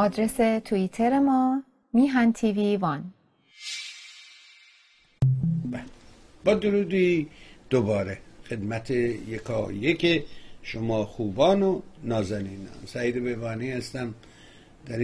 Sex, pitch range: male, 105-155 Hz